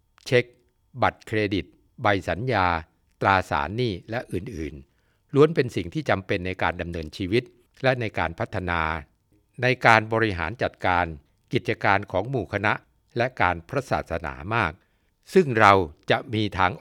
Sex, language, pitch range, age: male, Thai, 85-125 Hz, 60-79